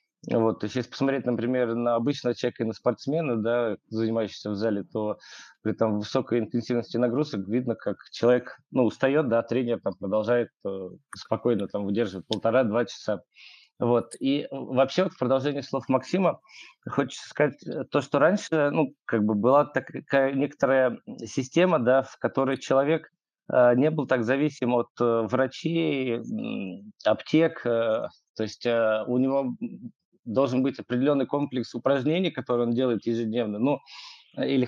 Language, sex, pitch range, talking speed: Russian, male, 115-140 Hz, 145 wpm